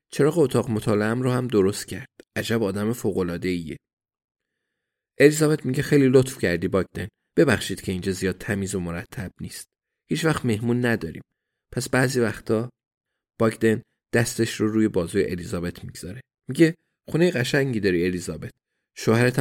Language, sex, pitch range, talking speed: Persian, male, 95-120 Hz, 135 wpm